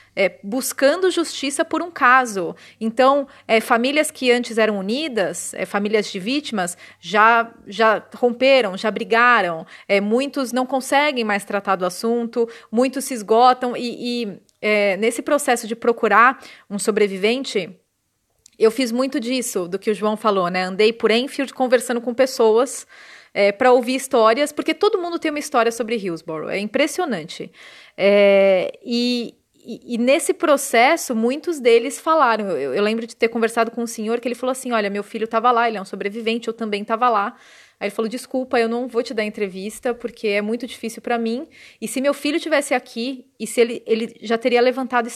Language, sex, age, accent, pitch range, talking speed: Portuguese, female, 30-49, Brazilian, 210-255 Hz, 170 wpm